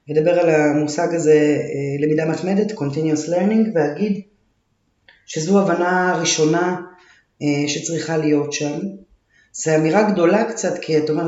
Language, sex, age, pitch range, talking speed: Hebrew, female, 30-49, 150-170 Hz, 130 wpm